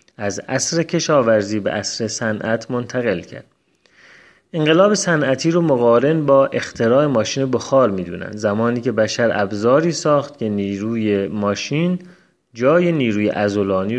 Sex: male